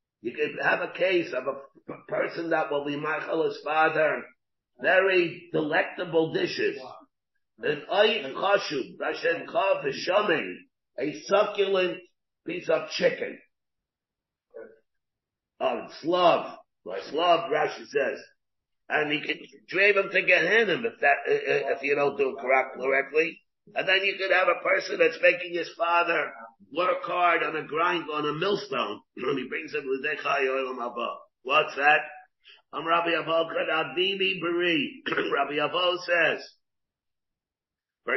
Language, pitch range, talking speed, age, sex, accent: English, 155-200 Hz, 125 wpm, 50-69, male, American